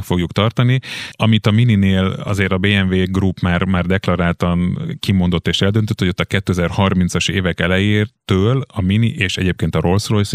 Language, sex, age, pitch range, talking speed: Hungarian, male, 30-49, 90-105 Hz, 160 wpm